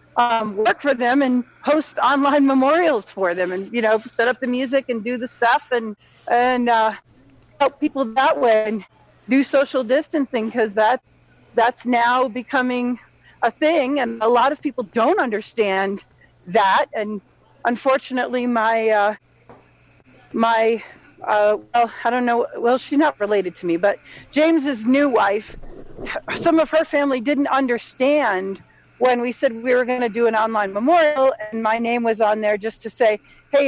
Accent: American